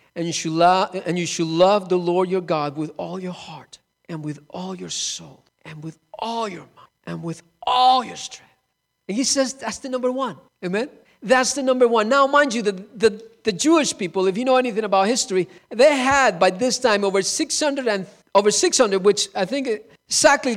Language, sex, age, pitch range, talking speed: English, male, 50-69, 200-275 Hz, 205 wpm